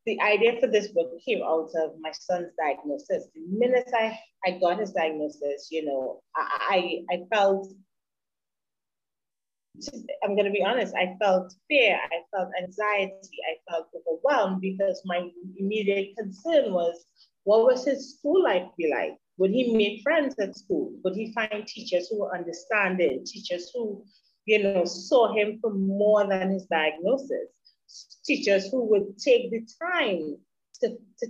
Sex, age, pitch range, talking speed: female, 30-49, 180-230 Hz, 155 wpm